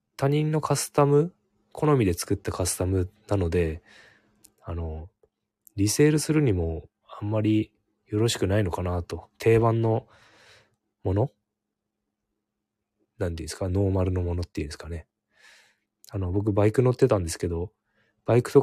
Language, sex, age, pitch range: Japanese, male, 20-39, 90-110 Hz